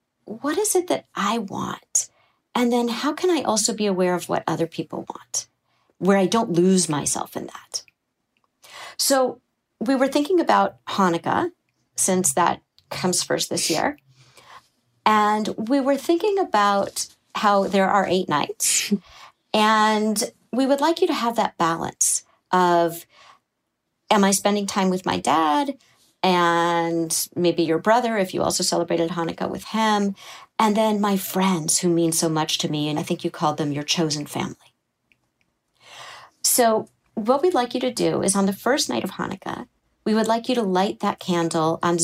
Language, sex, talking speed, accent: English, female, 170 wpm, American